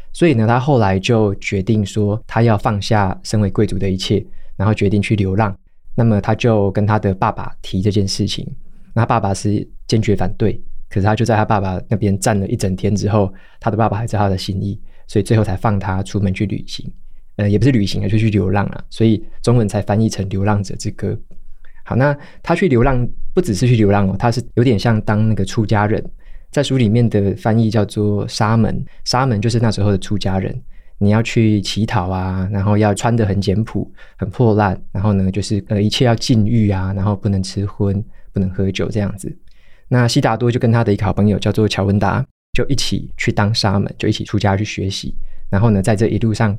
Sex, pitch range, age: male, 100-115 Hz, 20-39